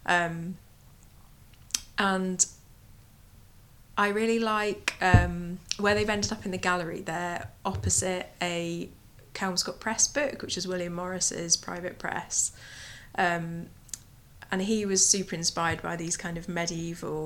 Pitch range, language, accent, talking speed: 160-185 Hz, English, British, 125 wpm